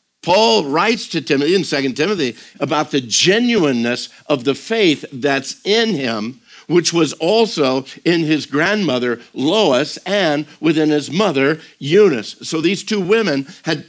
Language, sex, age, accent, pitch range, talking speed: English, male, 60-79, American, 125-165 Hz, 145 wpm